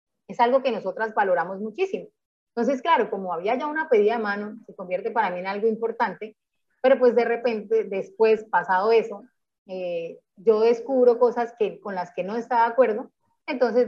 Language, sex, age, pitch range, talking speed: Spanish, female, 30-49, 215-265 Hz, 180 wpm